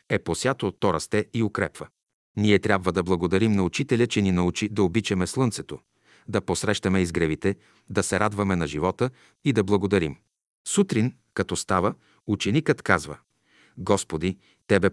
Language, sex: Bulgarian, male